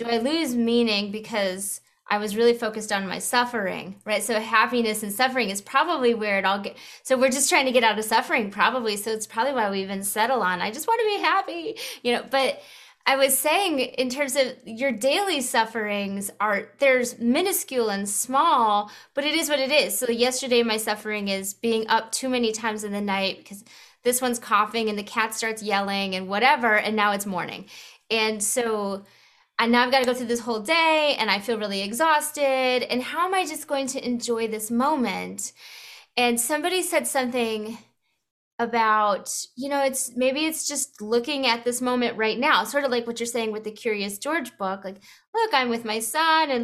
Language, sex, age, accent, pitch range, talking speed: English, female, 20-39, American, 215-275 Hz, 205 wpm